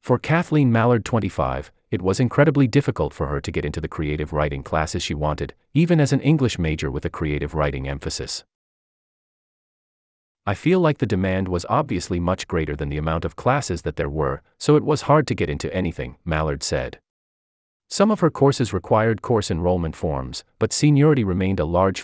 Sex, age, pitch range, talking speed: male, 30-49, 75-115 Hz, 190 wpm